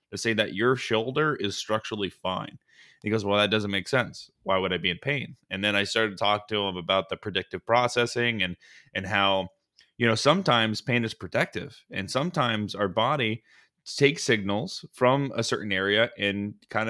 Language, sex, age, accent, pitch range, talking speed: English, male, 20-39, American, 105-130 Hz, 190 wpm